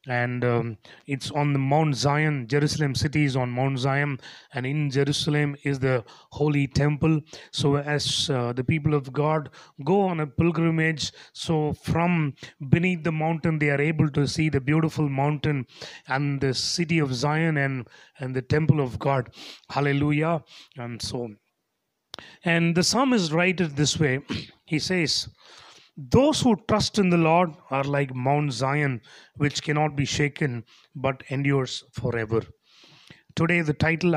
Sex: male